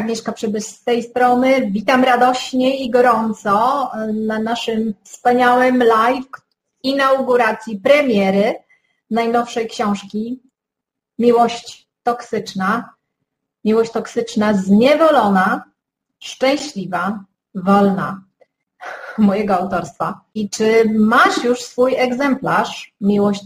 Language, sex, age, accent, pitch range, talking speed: Polish, female, 30-49, native, 200-235 Hz, 85 wpm